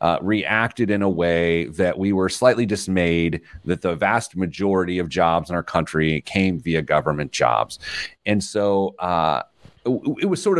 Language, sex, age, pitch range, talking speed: English, male, 30-49, 85-120 Hz, 170 wpm